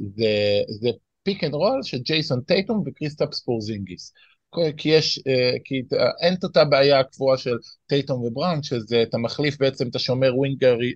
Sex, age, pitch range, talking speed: male, 20-39, 125-155 Hz, 150 wpm